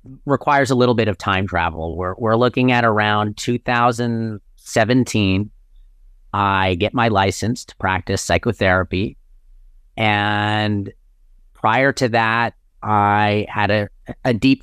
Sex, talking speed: male, 120 wpm